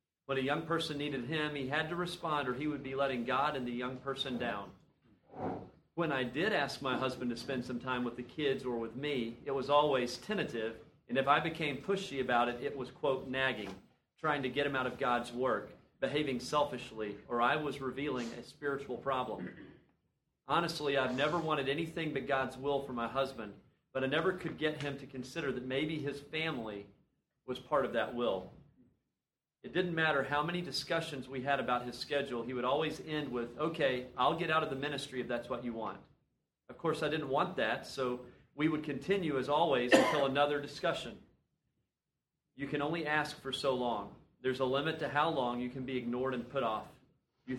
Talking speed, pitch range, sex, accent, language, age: 205 wpm, 125-150 Hz, male, American, English, 40-59